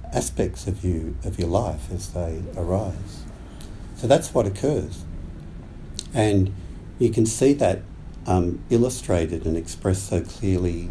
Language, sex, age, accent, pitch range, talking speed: English, male, 60-79, Australian, 80-100 Hz, 130 wpm